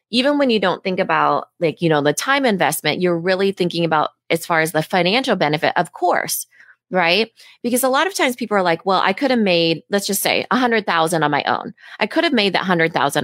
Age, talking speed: 20-39, 230 wpm